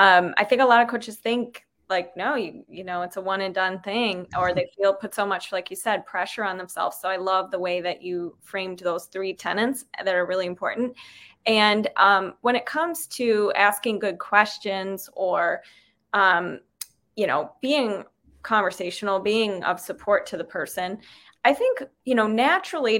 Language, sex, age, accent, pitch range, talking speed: English, female, 20-39, American, 190-235 Hz, 190 wpm